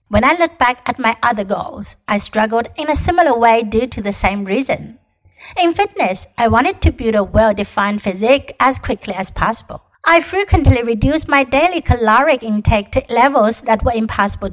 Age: 60-79